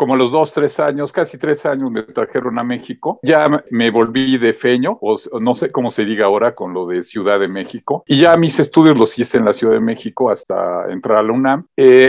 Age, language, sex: 50-69, Spanish, male